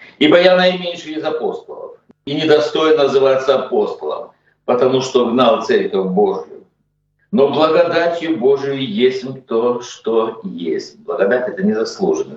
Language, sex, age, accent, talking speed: Russian, male, 60-79, native, 120 wpm